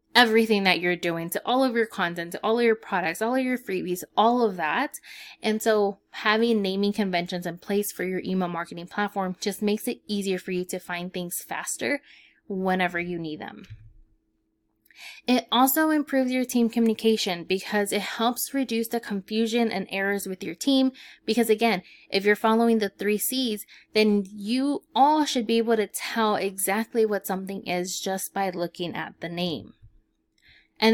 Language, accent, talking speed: English, American, 175 wpm